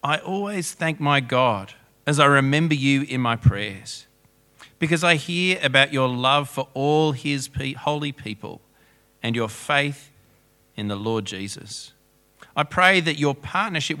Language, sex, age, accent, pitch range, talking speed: English, male, 40-59, Australian, 115-145 Hz, 150 wpm